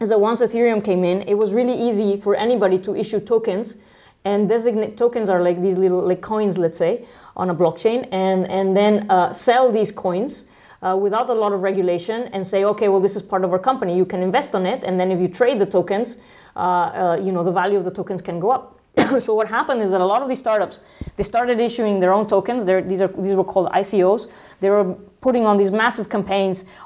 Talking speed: 240 wpm